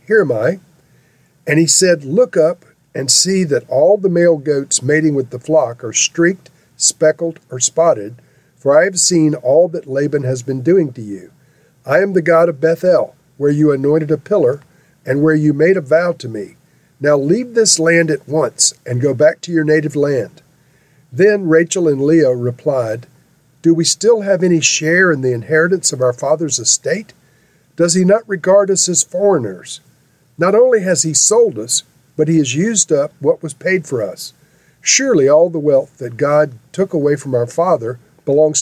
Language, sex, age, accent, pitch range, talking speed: English, male, 50-69, American, 140-170 Hz, 190 wpm